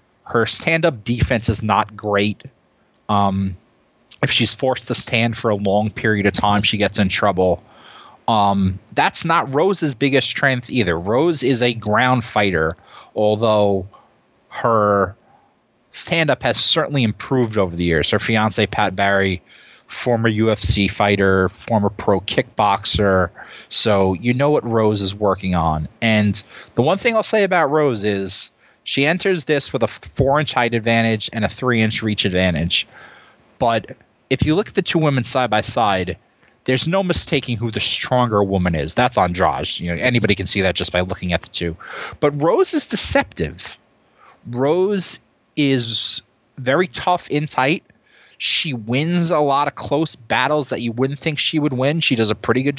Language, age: English, 30-49